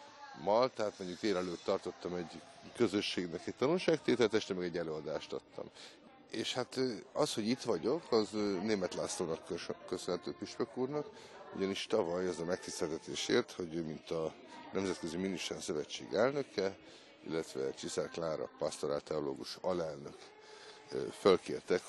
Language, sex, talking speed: Hungarian, male, 130 wpm